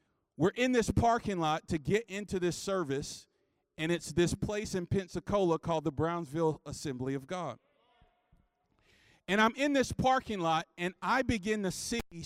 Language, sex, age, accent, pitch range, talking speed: English, male, 40-59, American, 155-205 Hz, 160 wpm